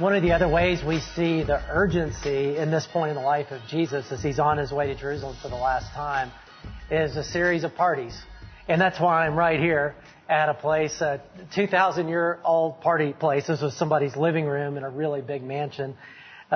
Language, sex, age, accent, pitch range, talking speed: English, male, 40-59, American, 140-165 Hz, 205 wpm